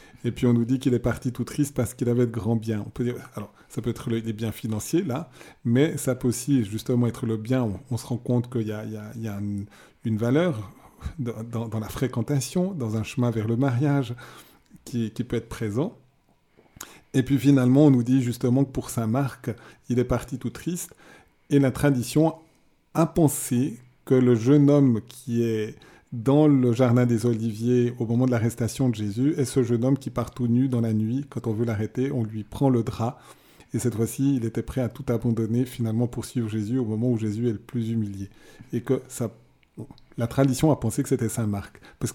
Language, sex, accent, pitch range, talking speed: French, male, French, 115-140 Hz, 220 wpm